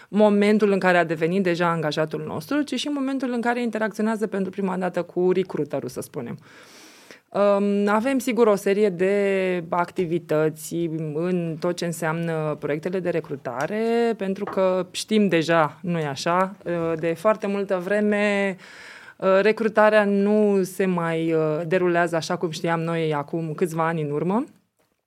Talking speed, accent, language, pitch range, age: 140 wpm, native, Romanian, 165-200 Hz, 20-39